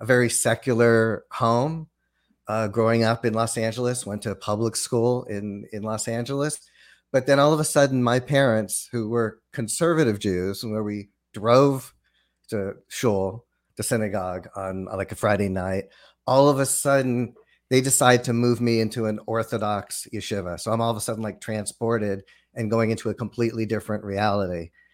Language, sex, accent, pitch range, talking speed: English, male, American, 110-125 Hz, 175 wpm